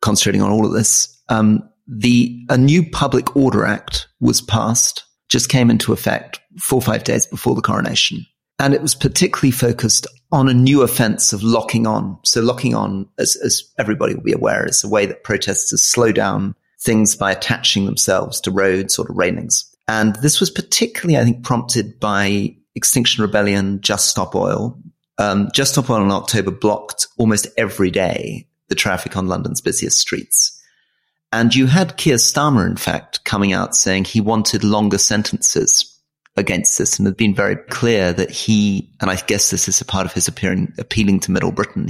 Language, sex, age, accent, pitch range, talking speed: English, male, 30-49, British, 105-130 Hz, 180 wpm